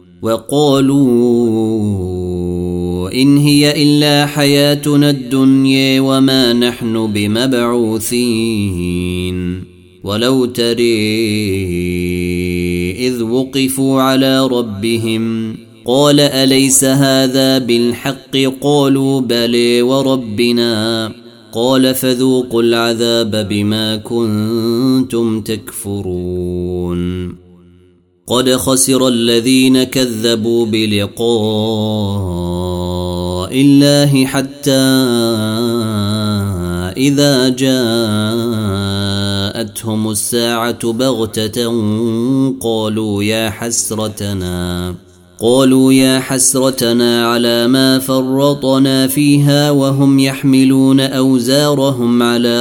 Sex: male